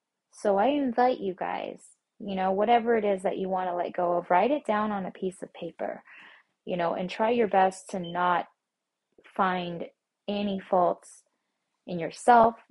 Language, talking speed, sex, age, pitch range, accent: English, 180 wpm, female, 20-39, 170-200 Hz, American